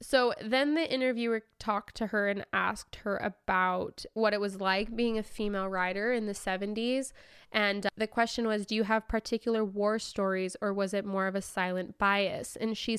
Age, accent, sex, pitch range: 20-39, American, female, 195-240 Hz